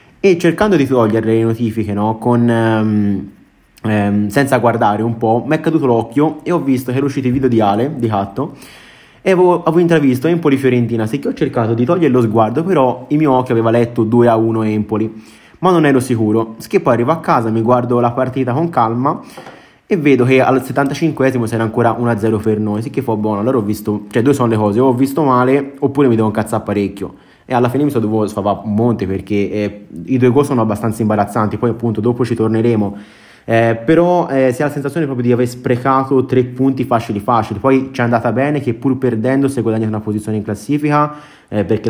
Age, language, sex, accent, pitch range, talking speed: 20-39, Italian, male, native, 110-135 Hz, 225 wpm